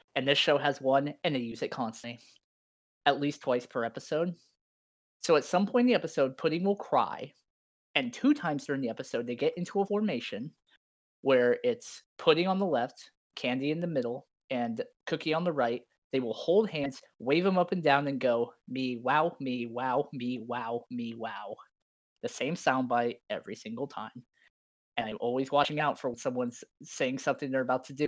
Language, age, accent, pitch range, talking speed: English, 20-39, American, 120-165 Hz, 190 wpm